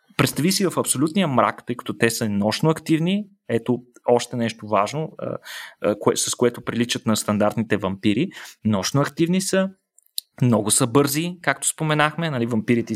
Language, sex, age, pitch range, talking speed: Bulgarian, male, 20-39, 115-160 Hz, 150 wpm